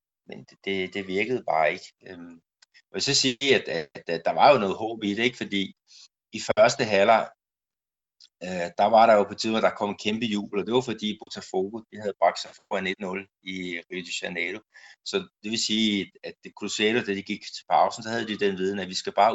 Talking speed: 225 wpm